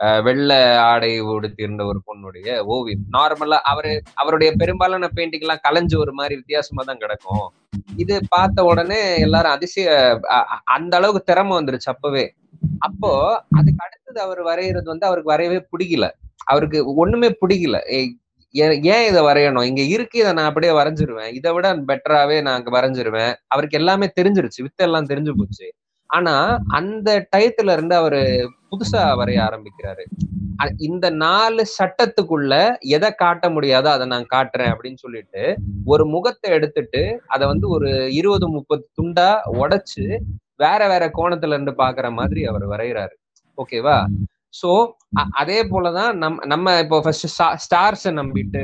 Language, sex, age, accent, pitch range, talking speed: Tamil, male, 20-39, native, 110-170 Hz, 125 wpm